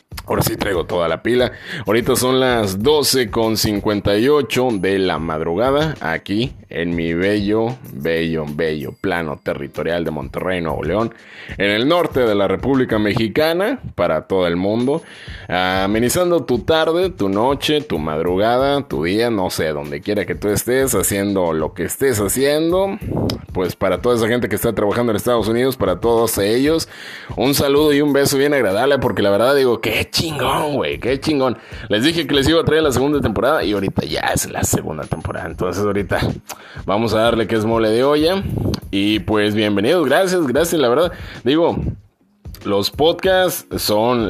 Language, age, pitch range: Spanish, 30-49, 95-140 Hz